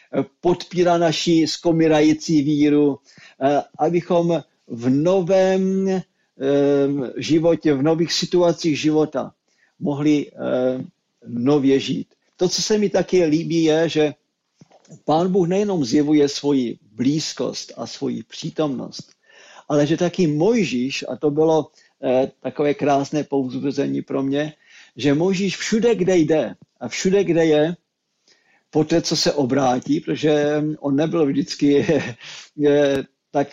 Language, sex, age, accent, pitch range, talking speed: Czech, male, 50-69, native, 135-165 Hz, 110 wpm